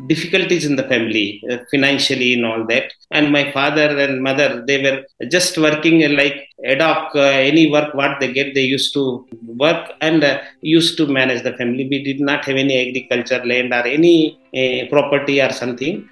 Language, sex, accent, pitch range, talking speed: English, male, Indian, 135-165 Hz, 190 wpm